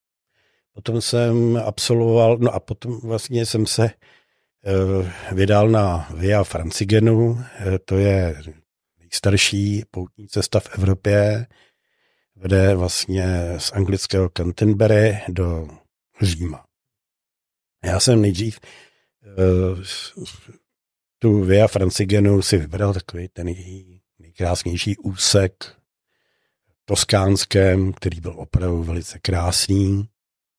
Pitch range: 90-105 Hz